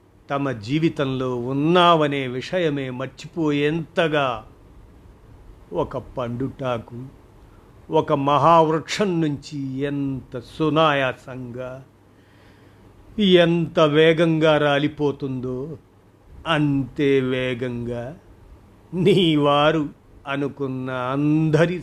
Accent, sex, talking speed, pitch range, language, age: native, male, 55 wpm, 120-145 Hz, Telugu, 50-69